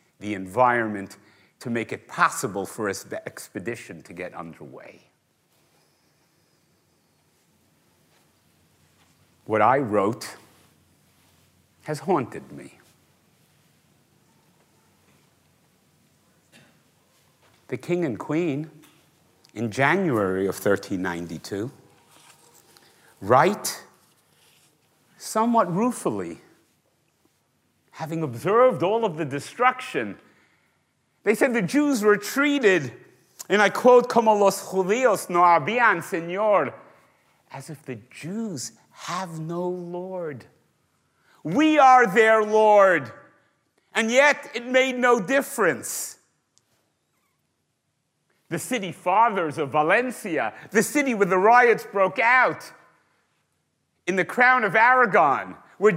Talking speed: 90 wpm